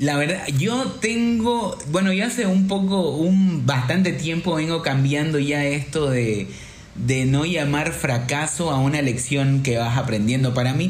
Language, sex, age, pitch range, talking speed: Spanish, male, 30-49, 130-165 Hz, 160 wpm